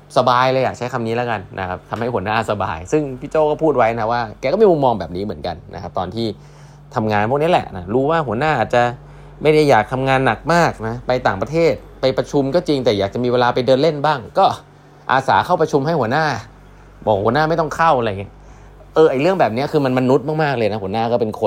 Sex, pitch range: male, 110-145 Hz